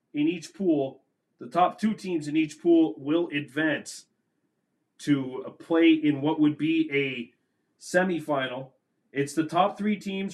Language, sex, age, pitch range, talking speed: English, male, 30-49, 145-190 Hz, 145 wpm